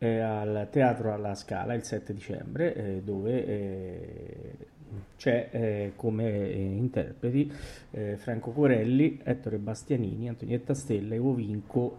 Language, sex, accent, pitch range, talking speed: Italian, male, native, 110-140 Hz, 125 wpm